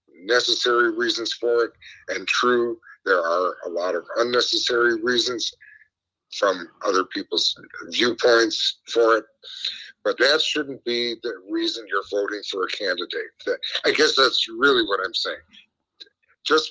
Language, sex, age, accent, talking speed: English, male, 50-69, American, 135 wpm